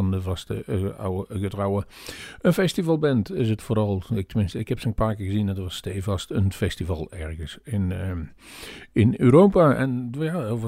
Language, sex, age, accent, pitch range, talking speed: Dutch, male, 50-69, Dutch, 95-115 Hz, 190 wpm